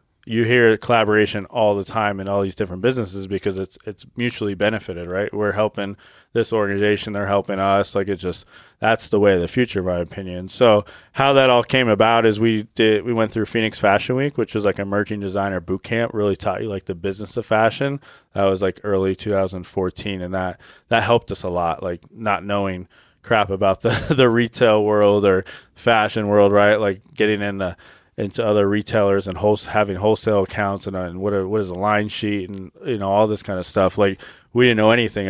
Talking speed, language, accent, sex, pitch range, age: 220 wpm, English, American, male, 95-110 Hz, 20-39